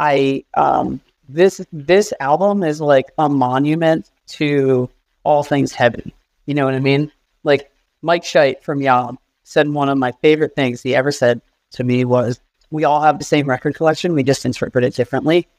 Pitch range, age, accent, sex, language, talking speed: 130-150 Hz, 40-59, American, male, English, 180 wpm